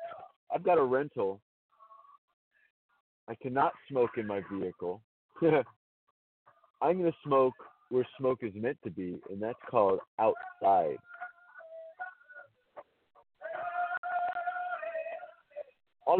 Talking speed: 95 wpm